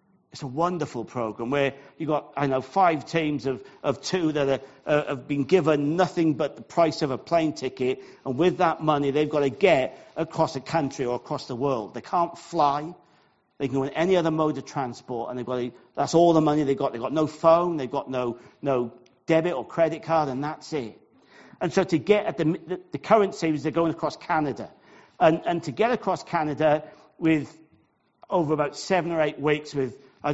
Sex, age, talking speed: male, 50-69, 210 wpm